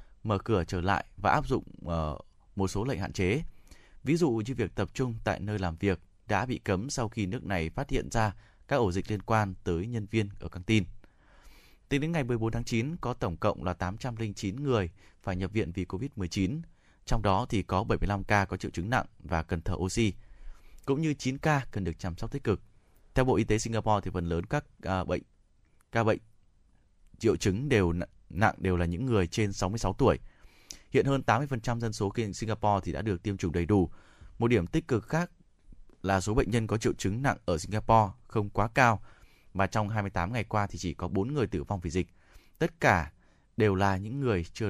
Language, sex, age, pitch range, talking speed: Vietnamese, male, 20-39, 90-115 Hz, 215 wpm